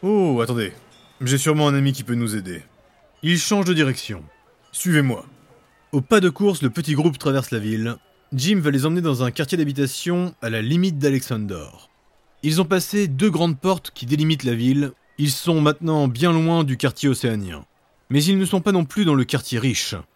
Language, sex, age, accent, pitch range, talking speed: French, male, 20-39, French, 130-180 Hz, 205 wpm